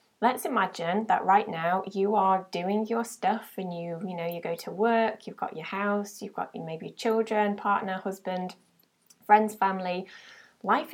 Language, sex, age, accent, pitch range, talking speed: English, female, 20-39, British, 175-220 Hz, 170 wpm